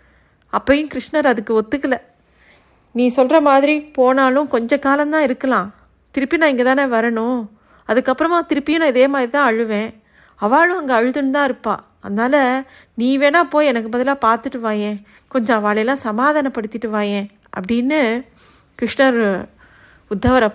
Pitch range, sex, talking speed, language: 215-275 Hz, female, 125 wpm, Tamil